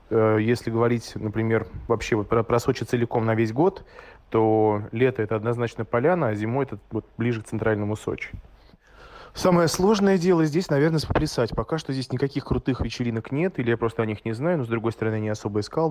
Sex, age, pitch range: male, 20-39, 105-120 Hz